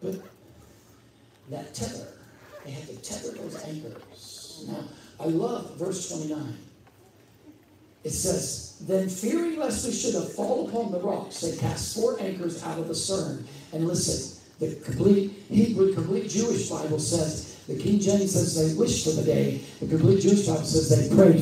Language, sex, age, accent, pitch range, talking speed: English, male, 60-79, American, 155-195 Hz, 165 wpm